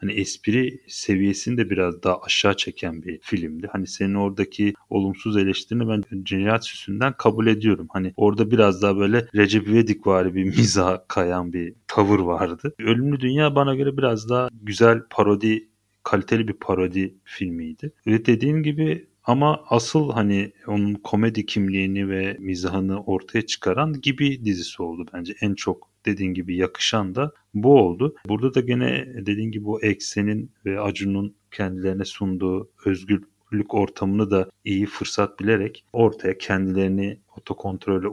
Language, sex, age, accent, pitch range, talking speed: Turkish, male, 40-59, native, 95-110 Hz, 140 wpm